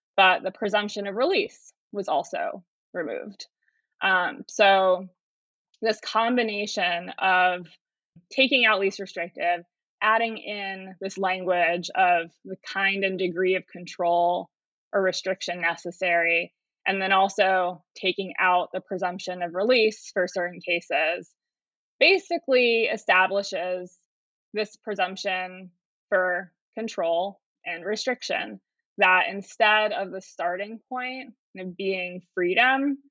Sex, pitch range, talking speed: female, 180-215 Hz, 105 wpm